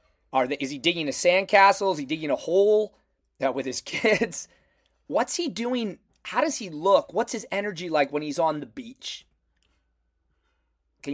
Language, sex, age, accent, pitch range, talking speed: English, male, 30-49, American, 130-180 Hz, 180 wpm